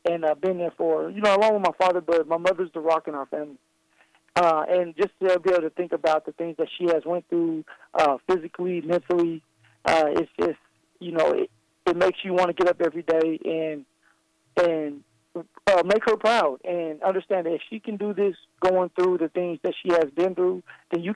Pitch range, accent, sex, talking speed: 160-185 Hz, American, male, 220 wpm